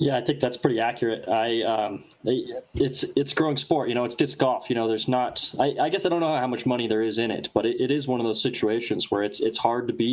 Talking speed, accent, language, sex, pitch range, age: 285 wpm, American, English, male, 115-130 Hz, 20-39